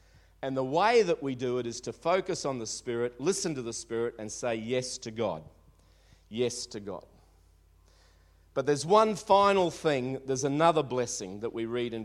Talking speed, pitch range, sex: 185 wpm, 110-160 Hz, male